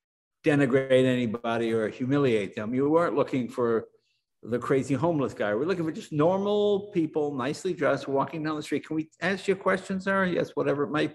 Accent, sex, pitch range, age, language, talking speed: American, male, 125-170 Hz, 60-79, English, 190 wpm